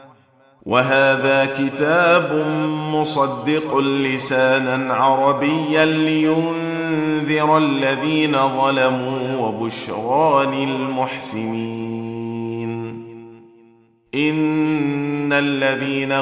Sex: male